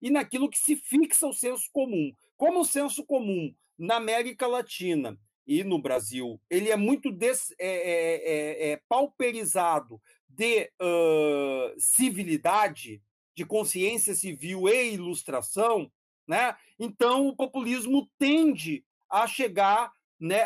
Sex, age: male, 40-59